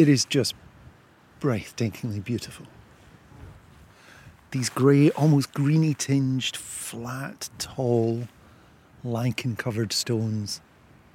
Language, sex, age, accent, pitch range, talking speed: English, male, 40-59, British, 115-145 Hz, 70 wpm